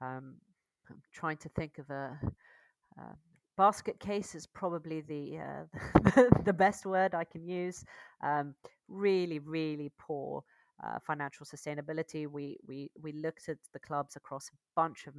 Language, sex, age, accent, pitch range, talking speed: English, female, 30-49, British, 145-170 Hz, 150 wpm